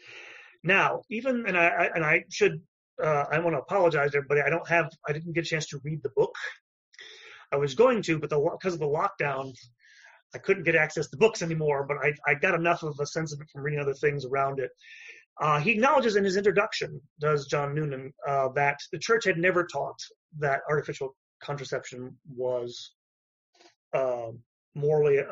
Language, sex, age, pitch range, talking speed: English, male, 30-49, 140-195 Hz, 195 wpm